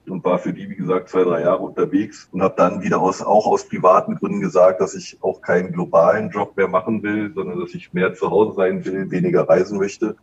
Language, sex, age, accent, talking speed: German, male, 30-49, German, 235 wpm